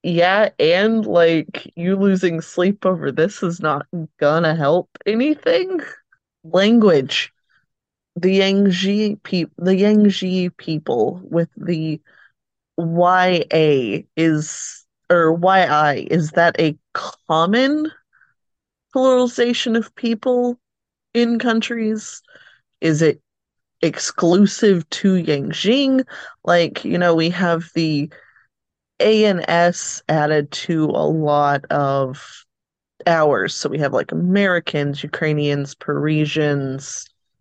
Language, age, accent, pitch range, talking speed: English, 30-49, American, 150-195 Hz, 95 wpm